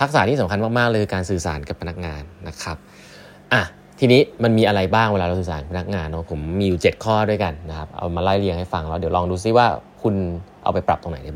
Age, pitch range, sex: 20-39, 95-135 Hz, male